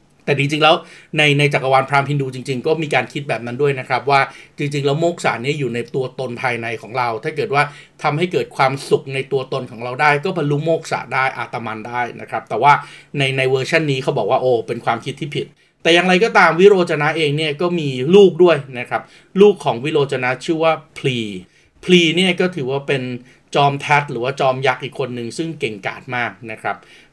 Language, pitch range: Thai, 130-160 Hz